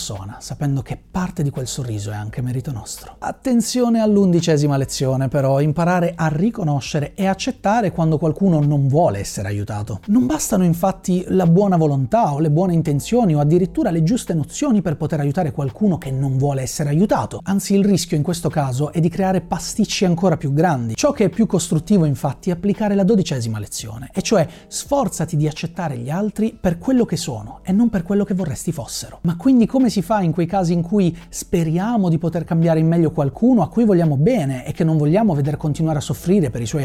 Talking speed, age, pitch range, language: 205 wpm, 30-49, 145-200 Hz, Italian